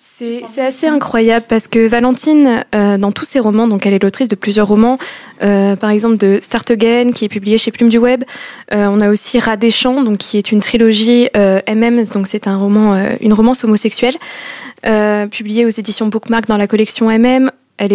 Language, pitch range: French, 215-255 Hz